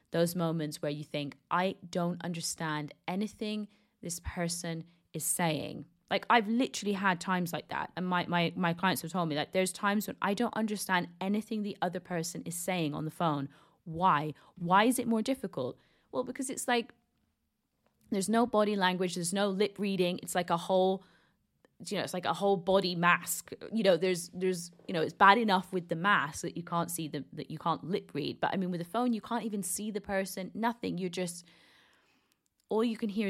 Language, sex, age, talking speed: English, female, 20-39, 205 wpm